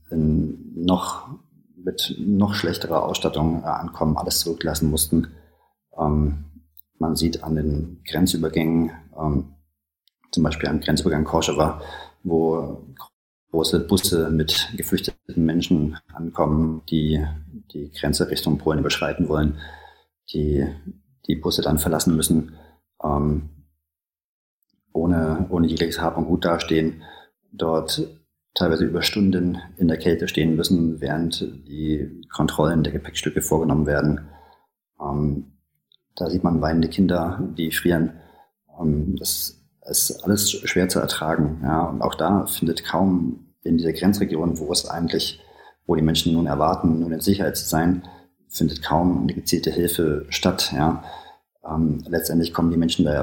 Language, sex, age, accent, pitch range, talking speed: German, male, 40-59, German, 75-85 Hz, 125 wpm